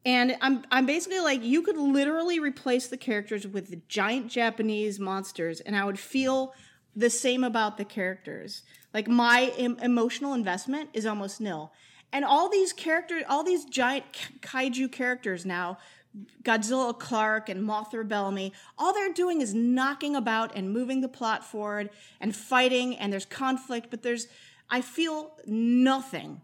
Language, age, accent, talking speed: English, 30-49, American, 155 wpm